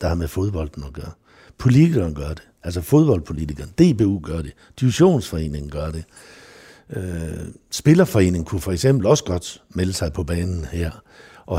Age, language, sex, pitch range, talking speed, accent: 60-79, Danish, male, 85-120 Hz, 150 wpm, native